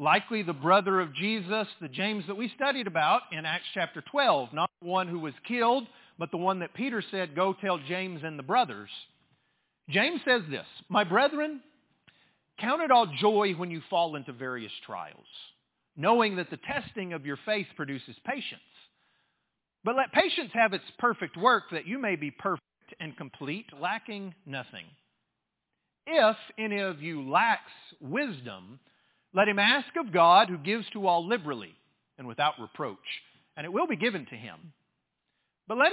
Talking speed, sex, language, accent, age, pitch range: 170 wpm, male, English, American, 50-69, 170-235 Hz